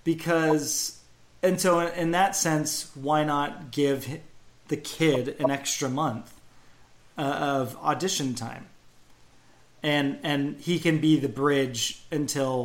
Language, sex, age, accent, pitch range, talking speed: English, male, 30-49, American, 135-165 Hz, 125 wpm